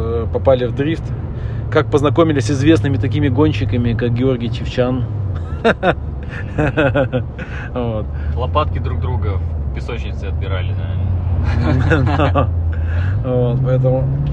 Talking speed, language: 75 wpm, Russian